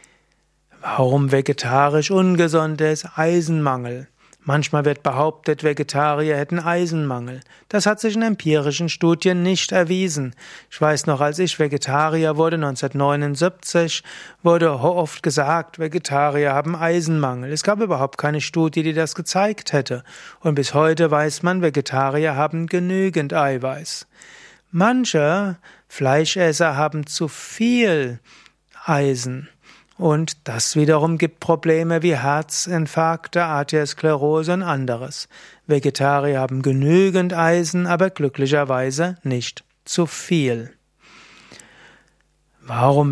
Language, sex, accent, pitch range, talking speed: German, male, German, 140-165 Hz, 105 wpm